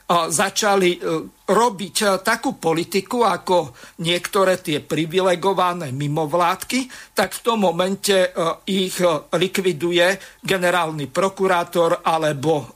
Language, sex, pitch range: Slovak, male, 160-190 Hz